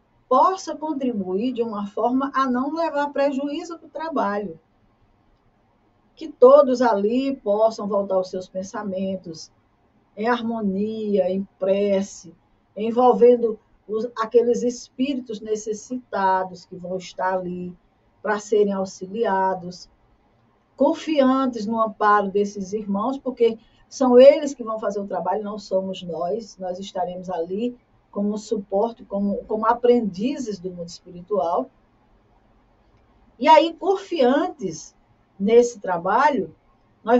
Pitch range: 190-255 Hz